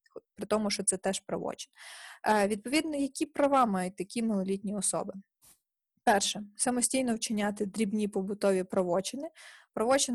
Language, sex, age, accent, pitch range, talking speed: Ukrainian, female, 20-39, native, 195-255 Hz, 120 wpm